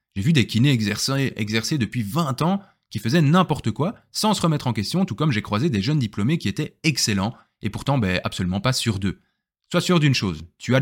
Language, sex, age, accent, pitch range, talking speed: French, male, 20-39, French, 105-135 Hz, 220 wpm